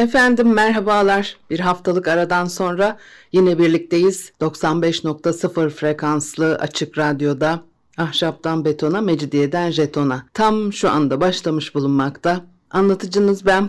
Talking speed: 100 wpm